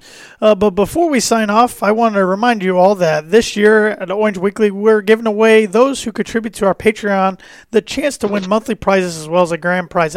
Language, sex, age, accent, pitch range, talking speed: English, male, 30-49, American, 185-220 Hz, 230 wpm